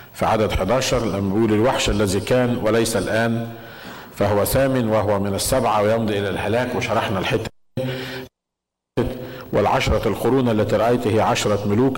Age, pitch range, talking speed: 50-69, 105-125 Hz, 120 wpm